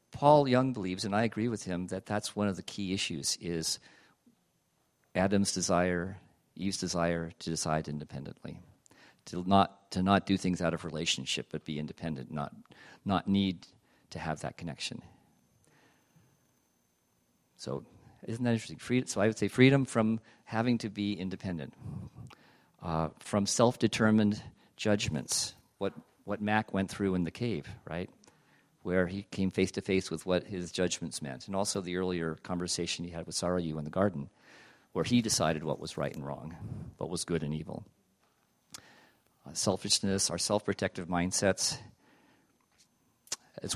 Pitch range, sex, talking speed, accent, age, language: 85-105 Hz, male, 150 wpm, American, 50-69, English